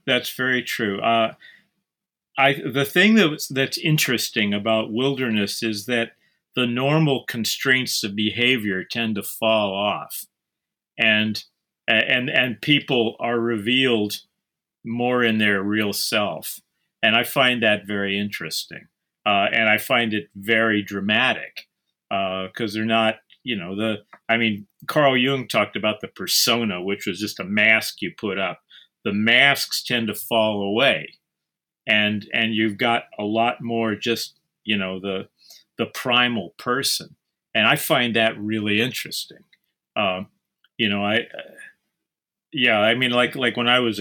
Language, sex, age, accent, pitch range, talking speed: English, male, 50-69, American, 105-120 Hz, 150 wpm